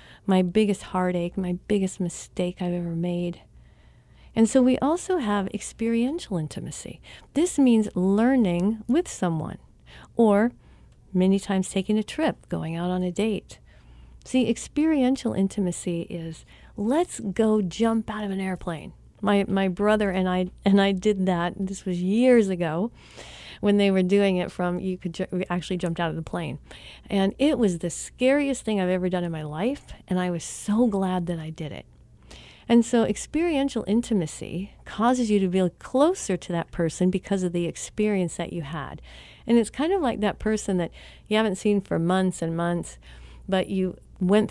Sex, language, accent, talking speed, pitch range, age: female, English, American, 175 wpm, 180-225 Hz, 40-59